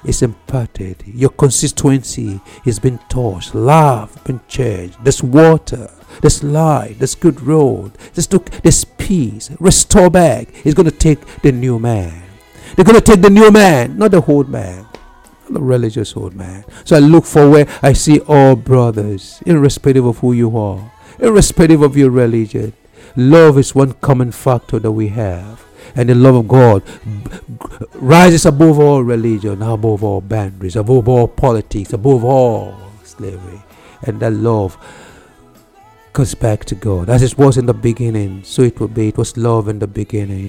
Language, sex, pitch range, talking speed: English, male, 110-140 Hz, 170 wpm